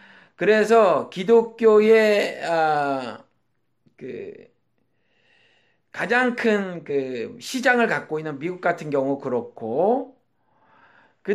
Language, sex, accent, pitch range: Korean, male, native, 155-215 Hz